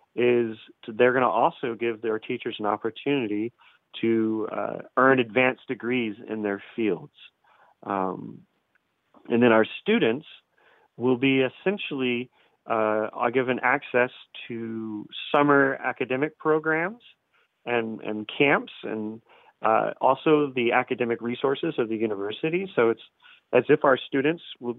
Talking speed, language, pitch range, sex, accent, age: 130 wpm, English, 110-130 Hz, male, American, 30-49